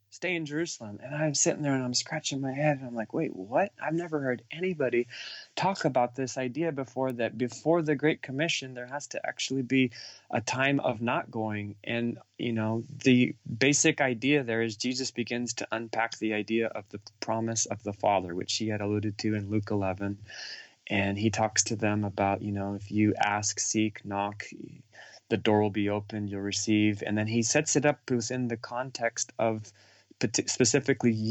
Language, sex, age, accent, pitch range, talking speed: English, male, 30-49, American, 105-130 Hz, 190 wpm